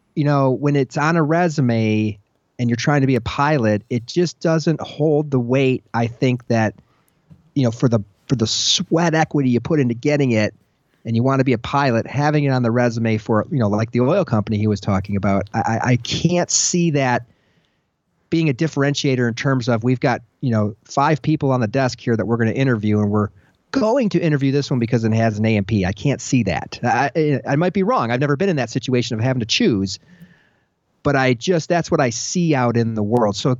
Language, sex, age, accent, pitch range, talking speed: English, male, 40-59, American, 115-150 Hz, 230 wpm